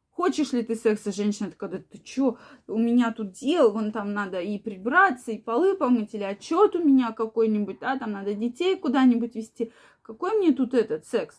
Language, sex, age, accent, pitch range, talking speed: Russian, female, 20-39, native, 230-300 Hz, 190 wpm